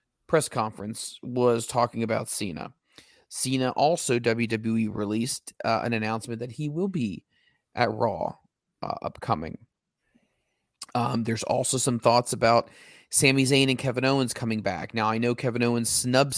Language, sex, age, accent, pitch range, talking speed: English, male, 30-49, American, 115-125 Hz, 145 wpm